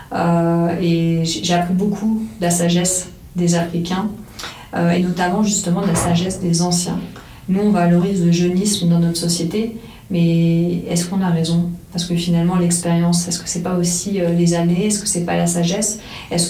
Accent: French